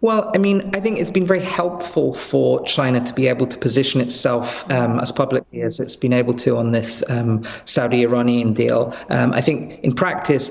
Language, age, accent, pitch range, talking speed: English, 40-59, British, 125-150 Hz, 200 wpm